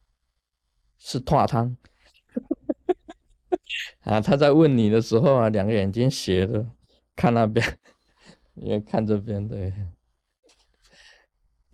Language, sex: Chinese, male